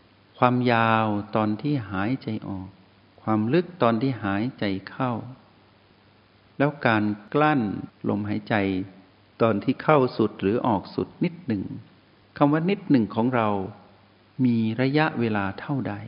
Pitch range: 100-130 Hz